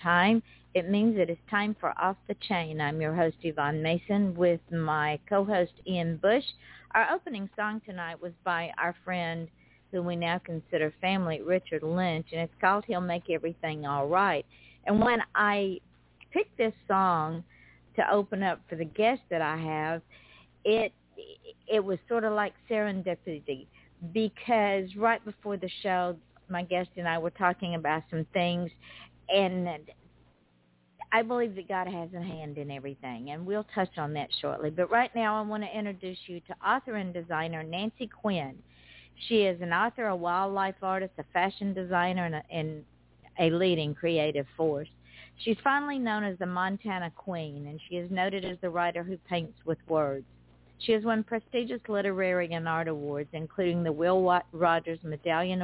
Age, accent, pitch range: 50-69, American, 160-200 Hz